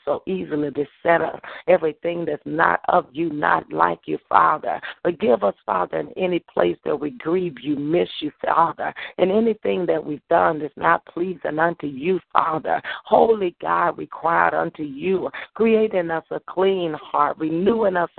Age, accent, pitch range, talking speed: 50-69, American, 155-195 Hz, 160 wpm